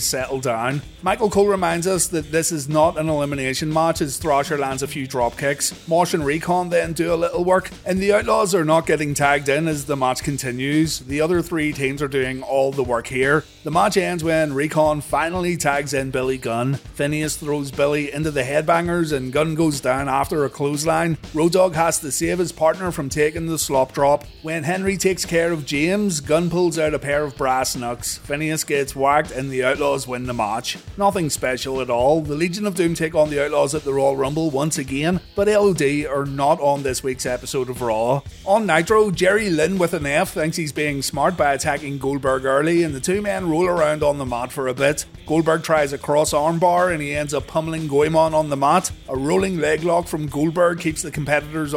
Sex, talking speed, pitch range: male, 215 wpm, 140-170 Hz